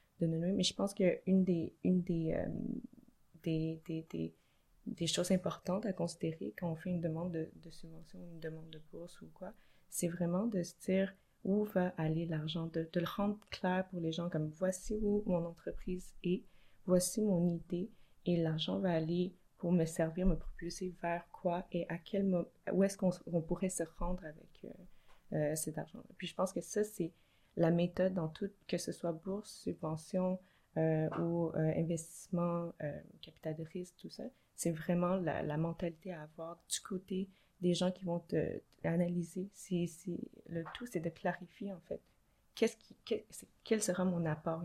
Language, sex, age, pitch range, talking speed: French, female, 20-39, 165-185 Hz, 190 wpm